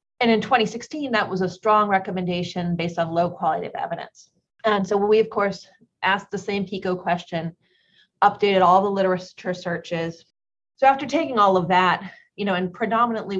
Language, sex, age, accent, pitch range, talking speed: English, female, 30-49, American, 175-195 Hz, 175 wpm